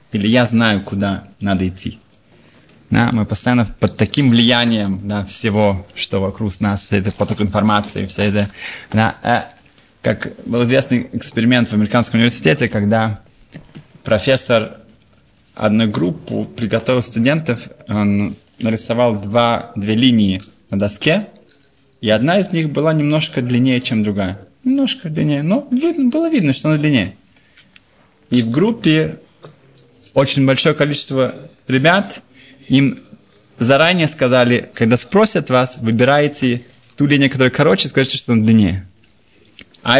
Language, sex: Russian, male